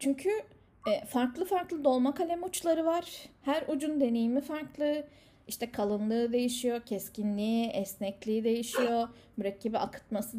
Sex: female